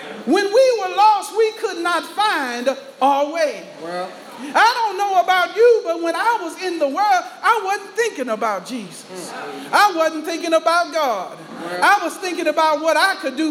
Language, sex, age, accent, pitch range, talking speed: English, male, 40-59, American, 280-390 Hz, 180 wpm